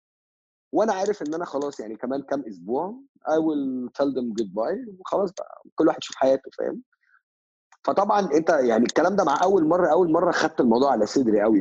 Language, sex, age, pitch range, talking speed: Arabic, male, 30-49, 120-200 Hz, 190 wpm